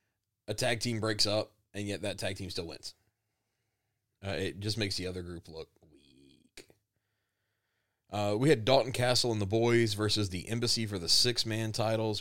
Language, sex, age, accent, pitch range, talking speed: English, male, 30-49, American, 95-110 Hz, 180 wpm